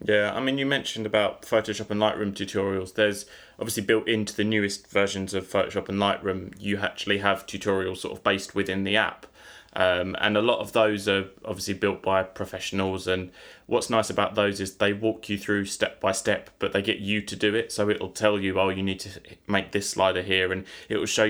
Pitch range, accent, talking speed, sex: 95-105 Hz, British, 220 wpm, male